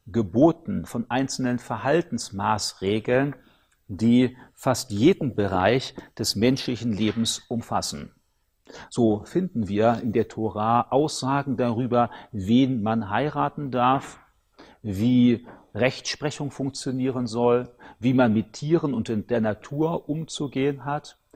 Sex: male